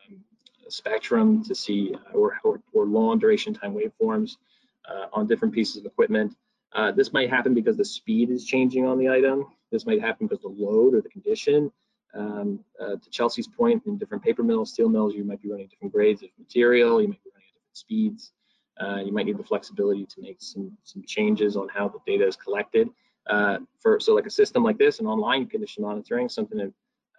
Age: 20-39